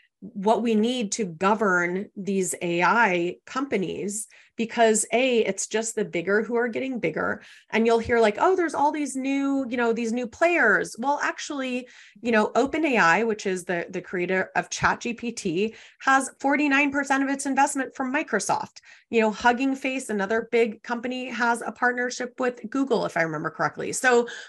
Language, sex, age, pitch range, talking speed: Arabic, female, 30-49, 190-245 Hz, 165 wpm